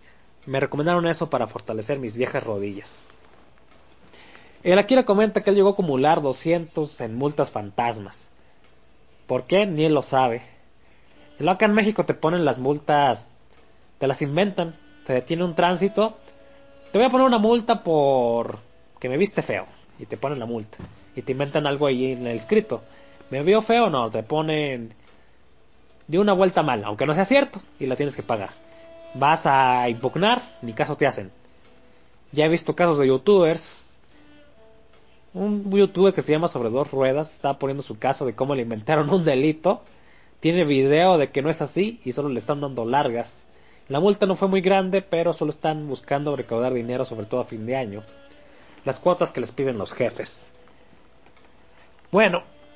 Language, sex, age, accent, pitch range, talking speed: Spanish, male, 30-49, Mexican, 125-185 Hz, 175 wpm